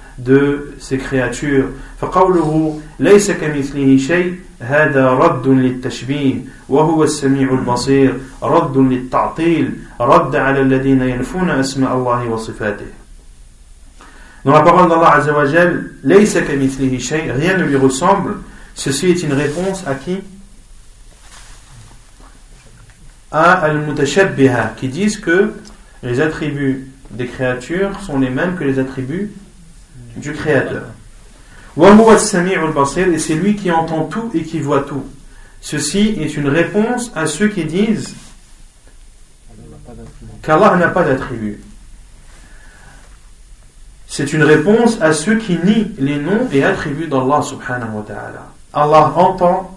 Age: 40-59